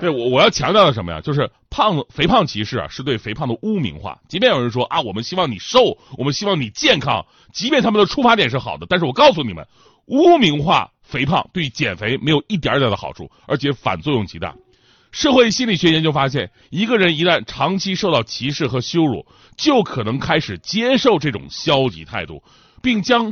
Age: 30-49